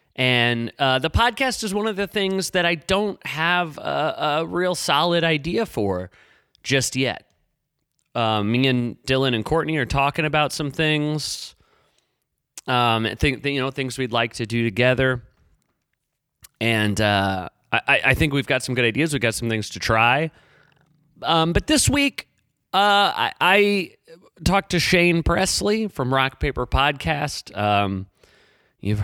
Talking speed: 155 wpm